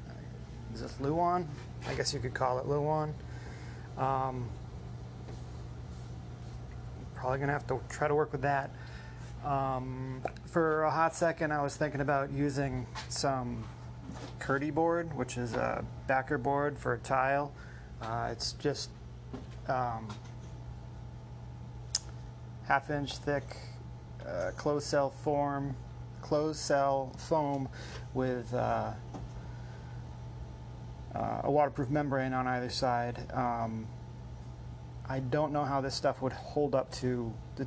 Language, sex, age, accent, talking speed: English, male, 30-49, American, 120 wpm